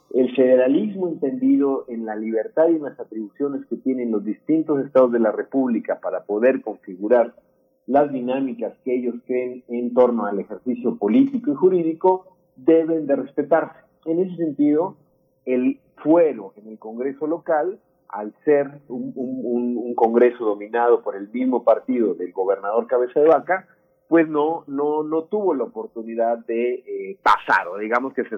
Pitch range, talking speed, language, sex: 125-170 Hz, 160 wpm, Spanish, male